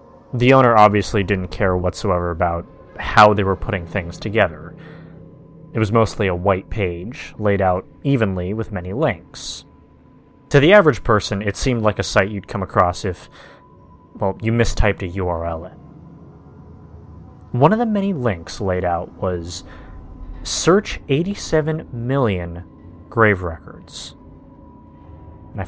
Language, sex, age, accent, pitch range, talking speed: English, male, 30-49, American, 90-120 Hz, 140 wpm